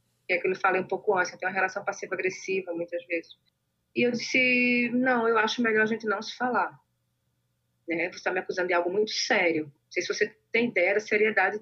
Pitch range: 175-230 Hz